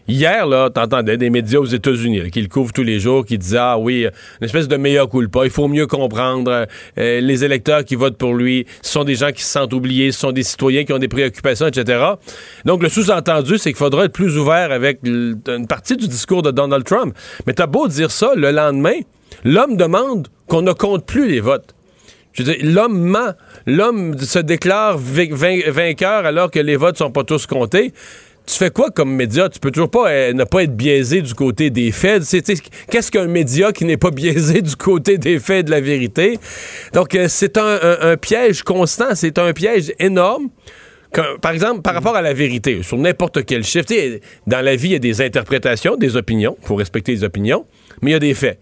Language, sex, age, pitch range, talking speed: French, male, 40-59, 125-175 Hz, 220 wpm